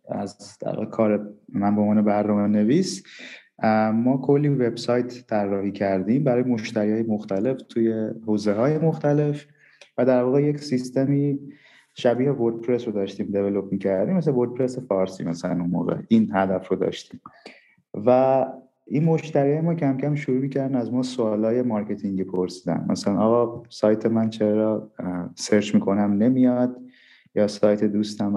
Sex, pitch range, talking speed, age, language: male, 100-125 Hz, 140 wpm, 30-49, Persian